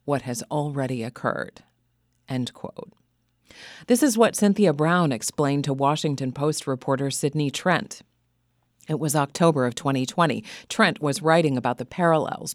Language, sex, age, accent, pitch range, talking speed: English, female, 40-59, American, 130-160 Hz, 140 wpm